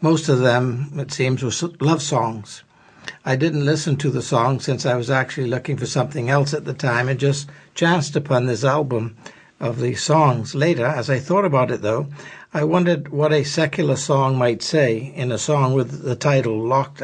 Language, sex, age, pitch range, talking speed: English, male, 60-79, 125-150 Hz, 195 wpm